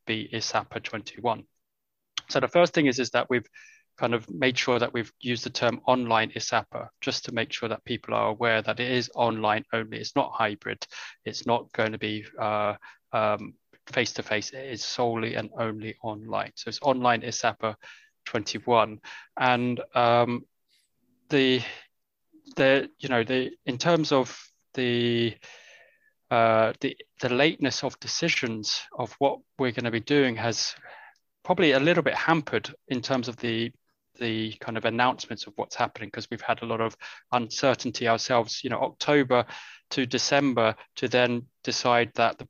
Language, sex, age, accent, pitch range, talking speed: English, male, 20-39, British, 115-130 Hz, 165 wpm